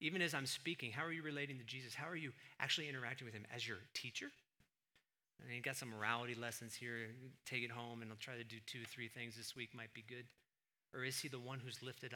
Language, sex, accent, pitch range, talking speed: English, male, American, 120-155 Hz, 255 wpm